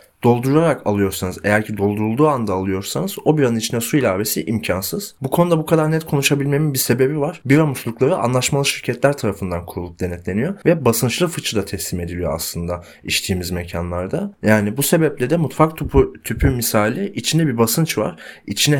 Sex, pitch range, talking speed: male, 105-145 Hz, 160 wpm